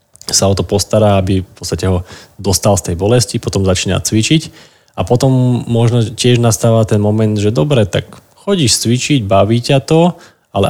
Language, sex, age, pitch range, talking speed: Slovak, male, 20-39, 100-120 Hz, 175 wpm